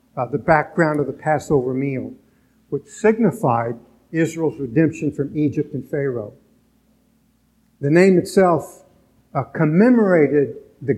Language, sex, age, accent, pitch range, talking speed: English, male, 60-79, American, 135-165 Hz, 110 wpm